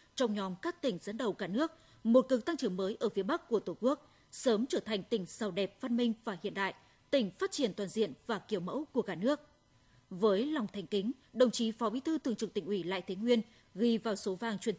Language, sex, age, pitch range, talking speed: Vietnamese, female, 20-39, 200-260 Hz, 250 wpm